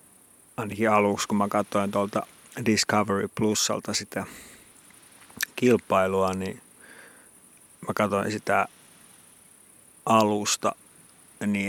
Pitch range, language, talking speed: 105-120 Hz, Finnish, 80 wpm